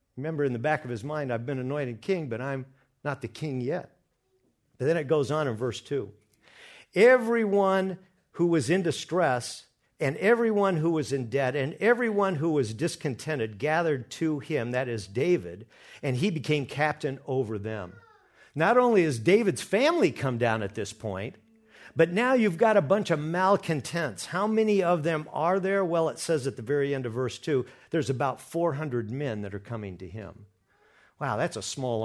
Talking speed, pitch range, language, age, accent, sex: 185 wpm, 115-165 Hz, English, 50-69, American, male